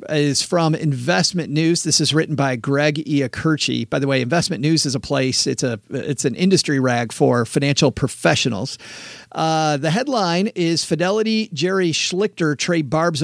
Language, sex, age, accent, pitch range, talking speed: English, male, 40-59, American, 145-180 Hz, 165 wpm